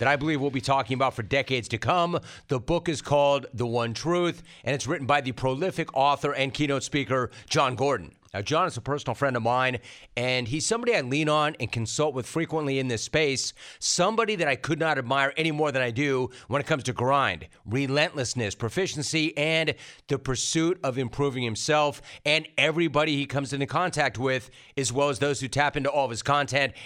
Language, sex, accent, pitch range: English, male, American, 125-155 Hz